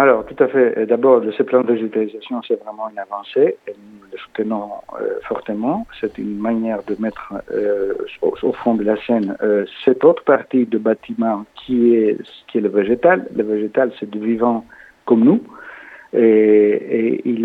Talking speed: 180 wpm